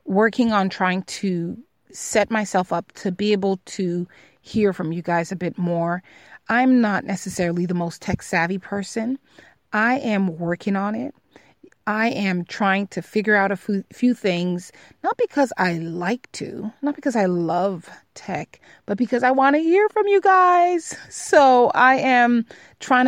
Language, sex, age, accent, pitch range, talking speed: English, female, 30-49, American, 185-230 Hz, 165 wpm